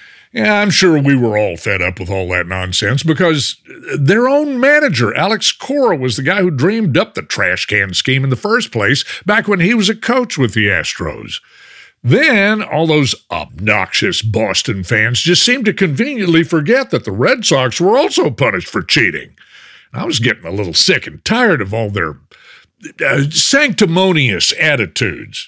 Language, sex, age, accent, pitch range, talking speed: English, male, 60-79, American, 125-210 Hz, 175 wpm